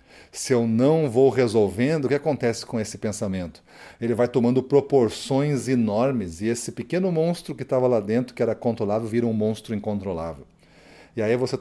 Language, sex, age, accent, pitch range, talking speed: Portuguese, male, 40-59, Brazilian, 110-140 Hz, 175 wpm